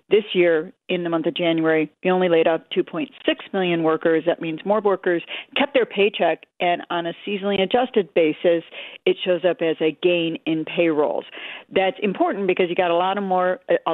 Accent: American